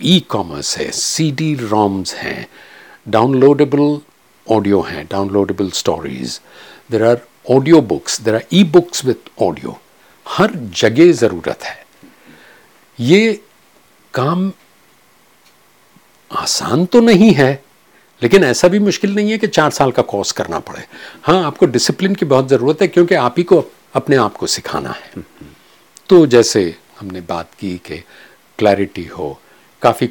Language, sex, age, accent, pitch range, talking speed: Hindi, male, 50-69, native, 100-160 Hz, 135 wpm